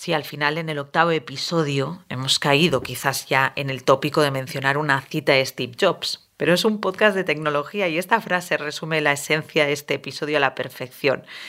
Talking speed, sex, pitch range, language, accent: 210 wpm, female, 150-180 Hz, Spanish, Spanish